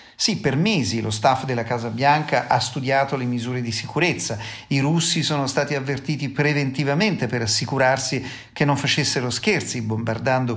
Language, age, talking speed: Italian, 40-59, 155 wpm